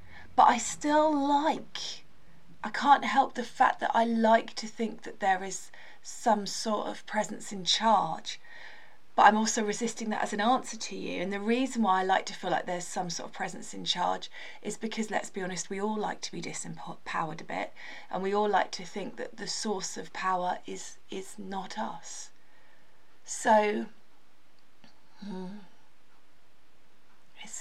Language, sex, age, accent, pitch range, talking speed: English, female, 20-39, British, 180-225 Hz, 175 wpm